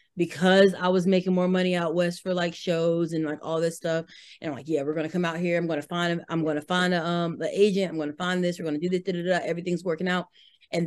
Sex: female